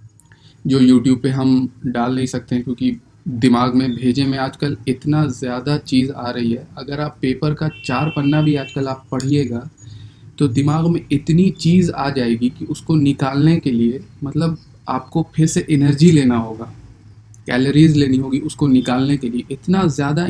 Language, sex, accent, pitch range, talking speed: Hindi, male, native, 120-145 Hz, 170 wpm